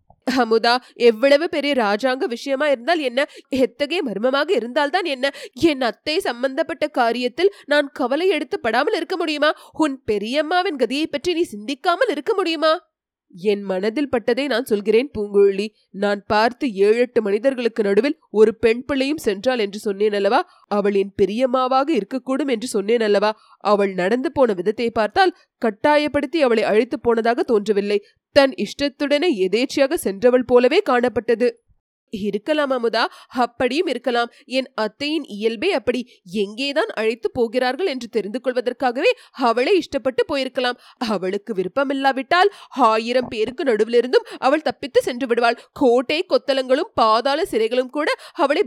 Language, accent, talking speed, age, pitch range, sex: Tamil, native, 100 wpm, 20-39, 230-300 Hz, female